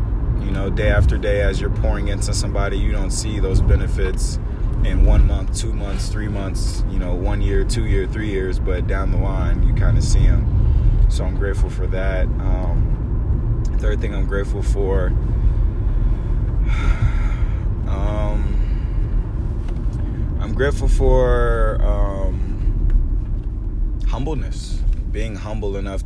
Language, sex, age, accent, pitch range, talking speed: English, male, 20-39, American, 85-100 Hz, 135 wpm